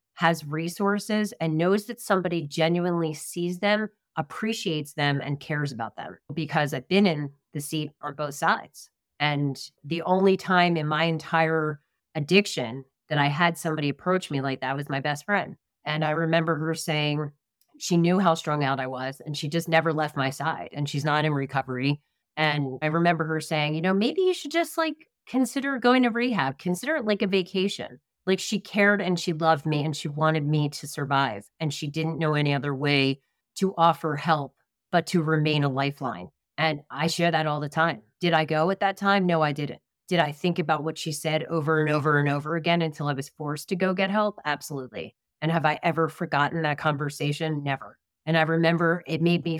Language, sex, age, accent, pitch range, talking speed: English, female, 30-49, American, 150-175 Hz, 205 wpm